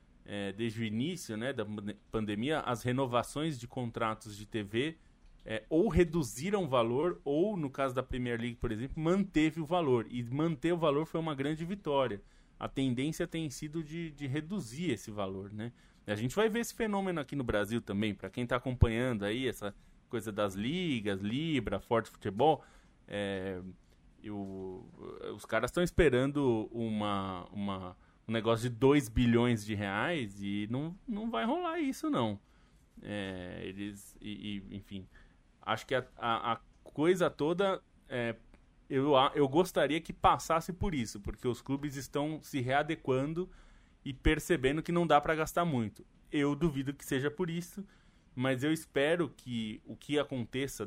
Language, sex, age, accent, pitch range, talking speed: Portuguese, male, 20-39, Brazilian, 105-155 Hz, 150 wpm